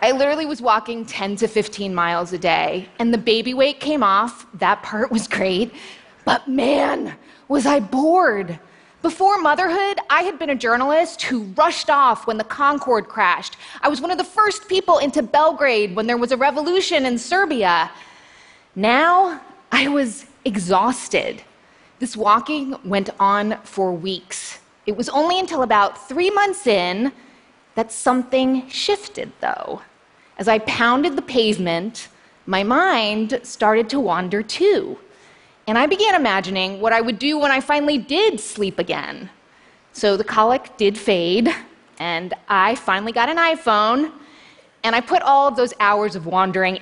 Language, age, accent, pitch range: Chinese, 20-39, American, 210-300 Hz